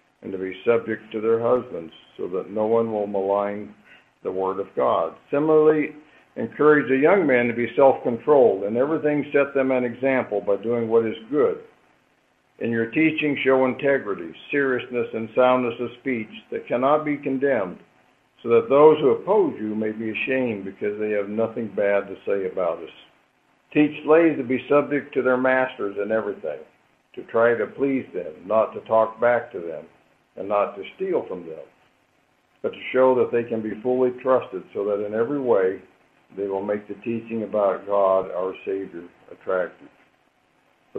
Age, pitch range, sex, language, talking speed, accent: 60-79, 110-135 Hz, male, English, 175 wpm, American